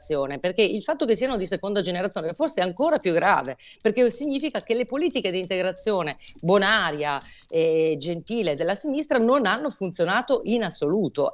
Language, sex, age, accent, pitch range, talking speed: Italian, female, 40-59, native, 155-220 Hz, 160 wpm